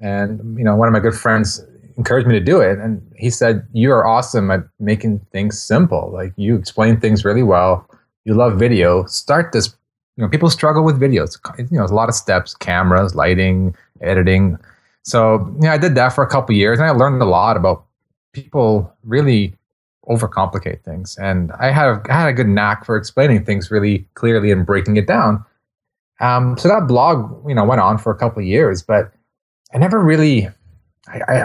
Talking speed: 200 wpm